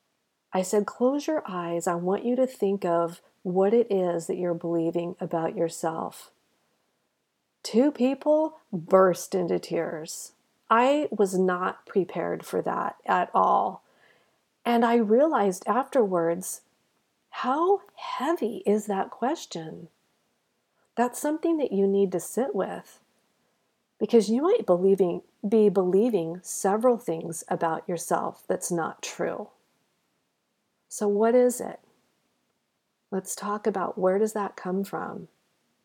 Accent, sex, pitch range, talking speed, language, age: American, female, 170-225 Hz, 120 wpm, English, 50-69